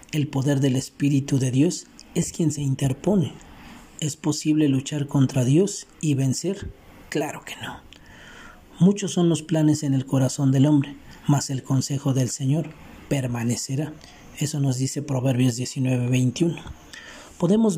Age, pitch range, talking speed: 40-59, 135-160 Hz, 140 wpm